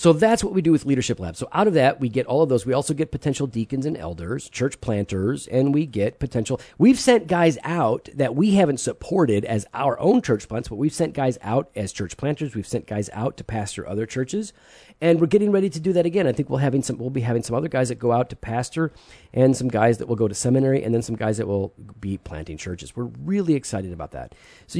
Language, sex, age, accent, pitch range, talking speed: English, male, 40-59, American, 110-155 Hz, 255 wpm